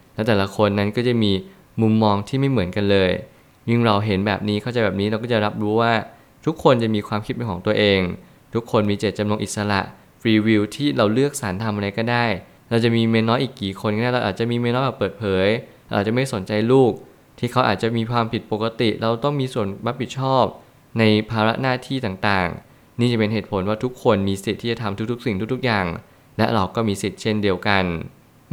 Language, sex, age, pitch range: Thai, male, 20-39, 100-120 Hz